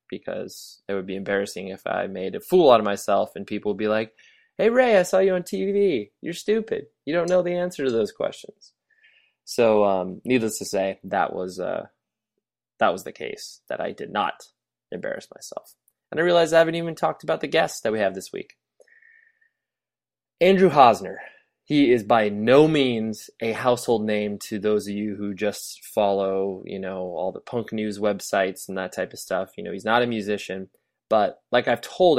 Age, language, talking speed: 20-39, English, 200 wpm